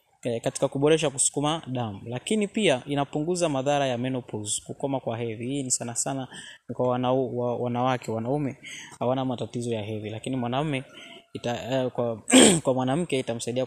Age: 20-39